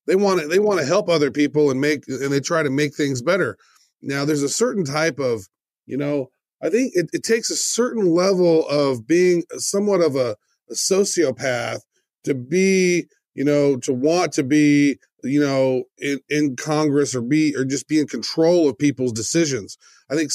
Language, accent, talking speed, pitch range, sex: English, American, 195 wpm, 140-175 Hz, male